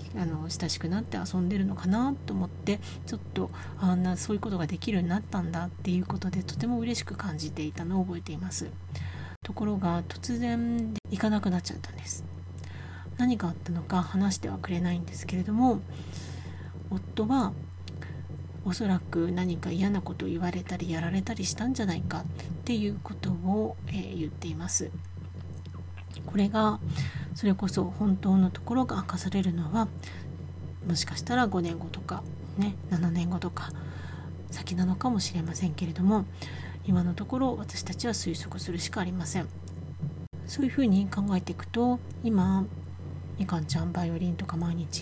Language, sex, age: Japanese, female, 40-59